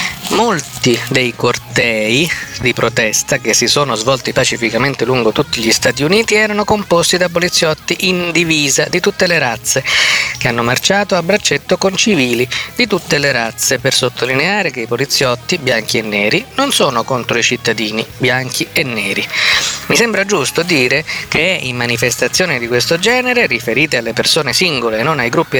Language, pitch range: Italian, 125-180 Hz